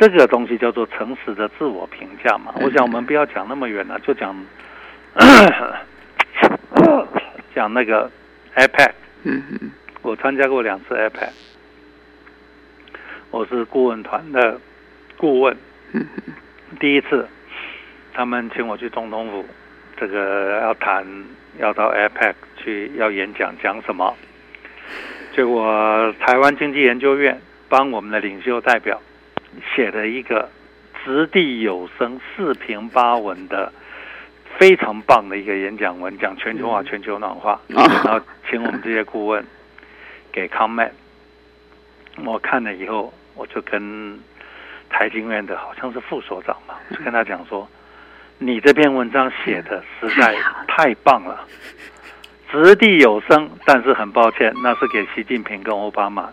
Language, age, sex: Chinese, 60-79, male